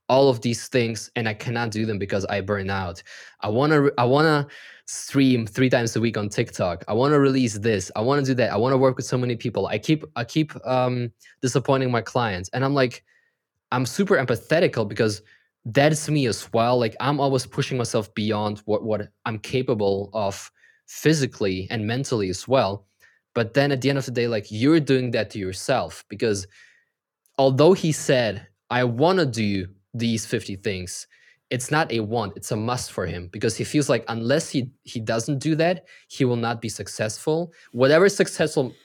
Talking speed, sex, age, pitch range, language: 190 wpm, male, 20-39, 110-135 Hz, English